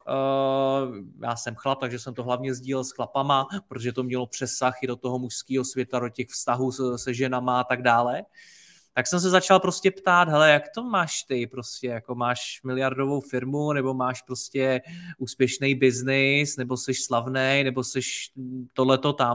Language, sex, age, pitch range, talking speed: Czech, male, 20-39, 130-155 Hz, 170 wpm